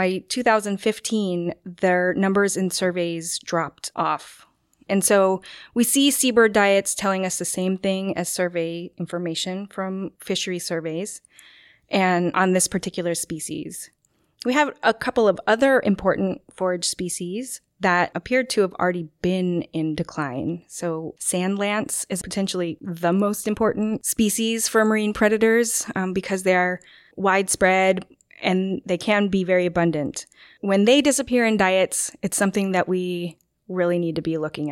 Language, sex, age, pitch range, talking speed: English, female, 20-39, 175-210 Hz, 145 wpm